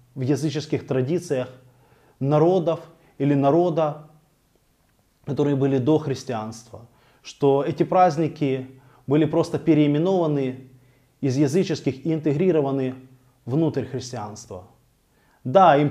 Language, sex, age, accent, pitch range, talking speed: Russian, male, 20-39, native, 130-165 Hz, 90 wpm